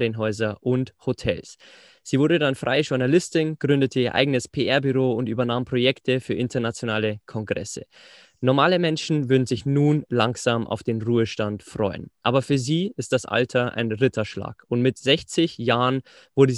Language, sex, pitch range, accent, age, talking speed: German, male, 115-140 Hz, German, 20-39, 150 wpm